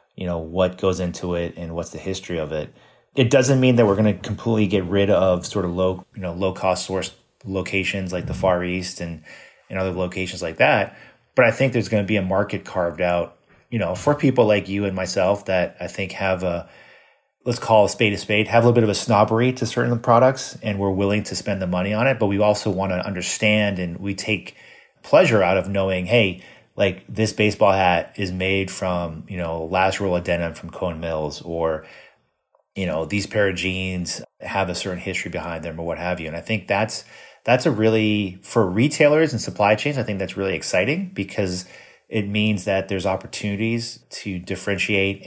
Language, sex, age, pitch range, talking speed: English, male, 30-49, 90-105 Hz, 215 wpm